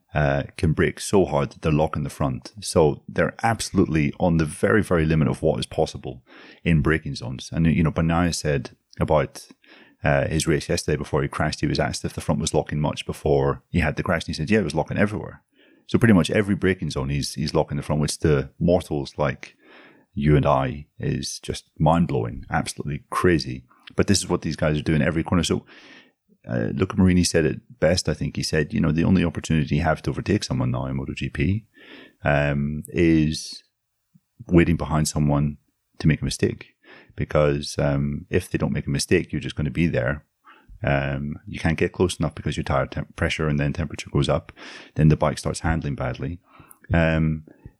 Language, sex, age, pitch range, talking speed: English, male, 30-49, 70-85 Hz, 205 wpm